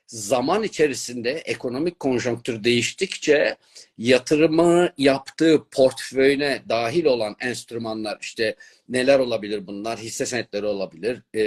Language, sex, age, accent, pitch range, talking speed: Turkish, male, 50-69, native, 115-160 Hz, 95 wpm